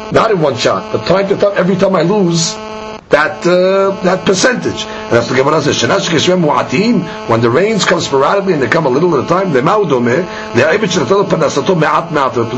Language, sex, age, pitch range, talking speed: English, male, 50-69, 180-215 Hz, 170 wpm